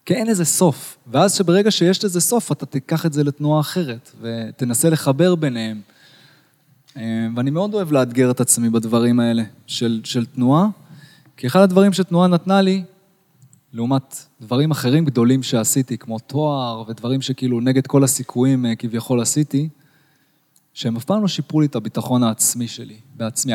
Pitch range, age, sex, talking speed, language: 125-175 Hz, 20-39, male, 155 wpm, Hebrew